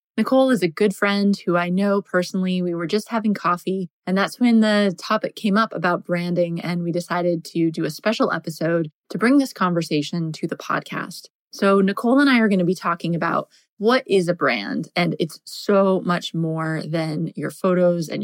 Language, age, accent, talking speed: English, 20-39, American, 200 wpm